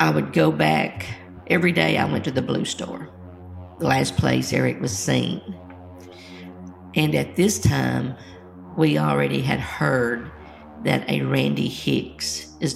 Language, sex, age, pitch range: English, female, 50-69, 75-90 Hz